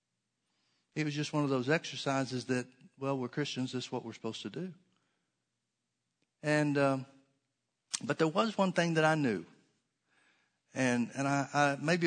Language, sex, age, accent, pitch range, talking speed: English, male, 50-69, American, 125-150 Hz, 165 wpm